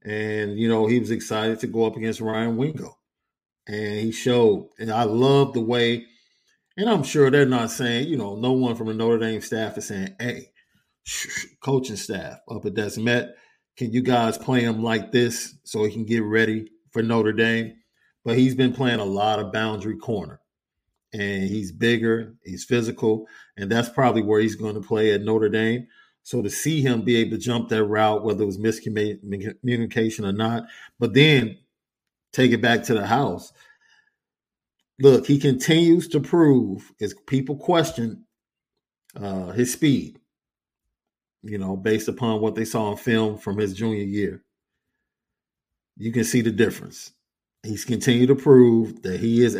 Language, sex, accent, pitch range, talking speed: English, male, American, 110-125 Hz, 175 wpm